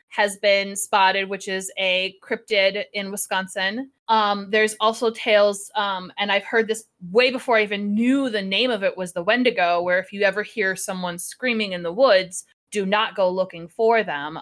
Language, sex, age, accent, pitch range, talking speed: English, female, 20-39, American, 195-250 Hz, 190 wpm